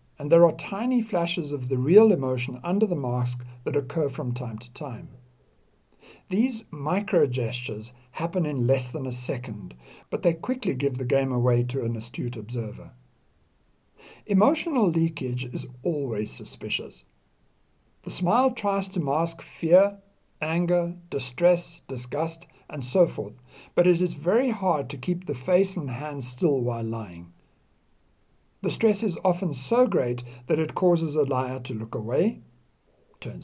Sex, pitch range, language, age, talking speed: male, 125-180 Hz, English, 60-79, 150 wpm